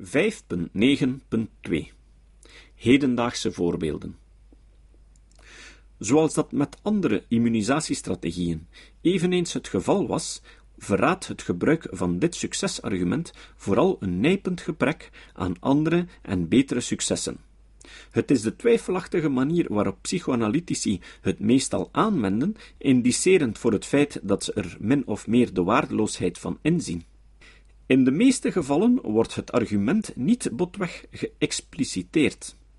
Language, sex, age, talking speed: Dutch, male, 50-69, 110 wpm